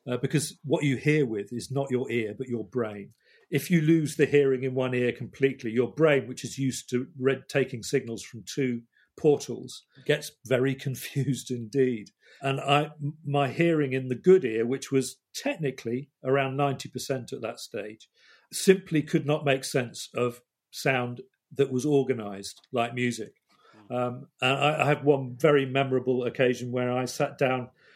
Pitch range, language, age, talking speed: 125-145 Hz, English, 40-59, 170 wpm